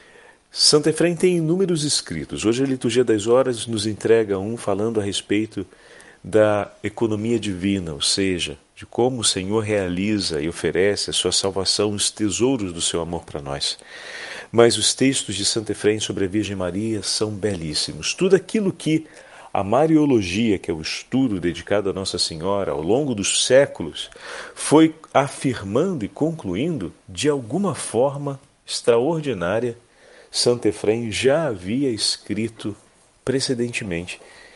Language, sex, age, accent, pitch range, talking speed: Portuguese, male, 40-59, Brazilian, 95-130 Hz, 140 wpm